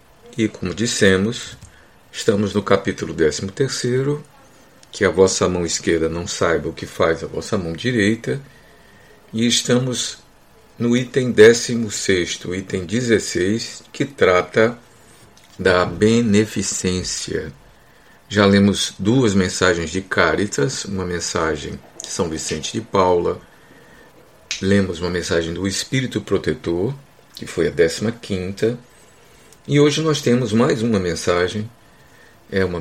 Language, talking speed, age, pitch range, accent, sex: Portuguese, 120 wpm, 50-69, 90-120 Hz, Brazilian, male